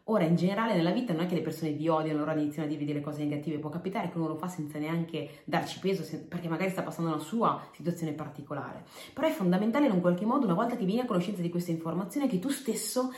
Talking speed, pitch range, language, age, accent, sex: 260 wpm, 155-205 Hz, Italian, 30-49, native, female